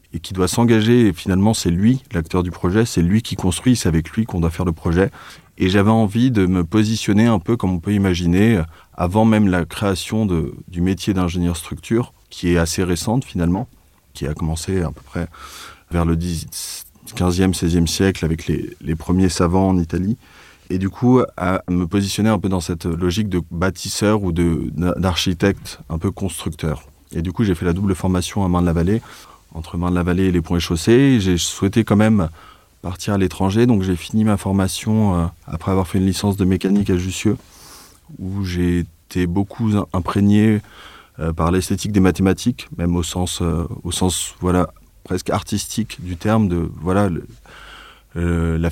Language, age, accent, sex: French, 30-49, French, male